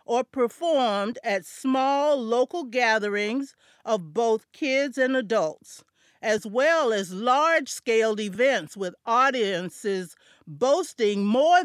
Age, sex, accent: 50-69, female, American